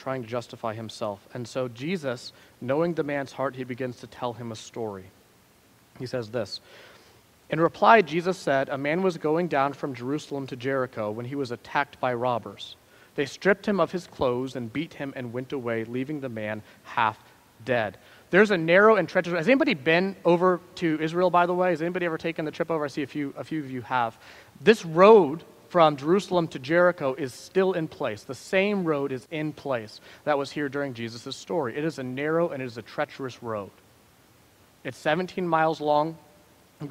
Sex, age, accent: male, 30-49, American